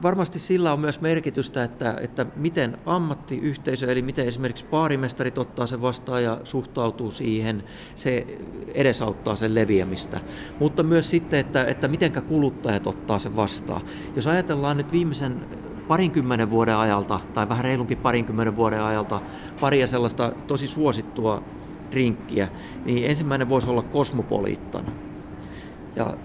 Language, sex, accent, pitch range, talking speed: Finnish, male, native, 115-140 Hz, 130 wpm